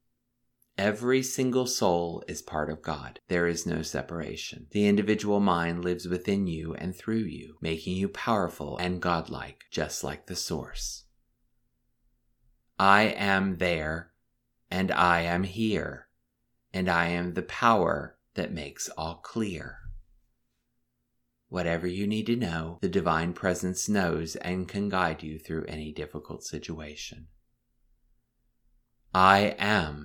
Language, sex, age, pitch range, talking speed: English, male, 30-49, 80-110 Hz, 130 wpm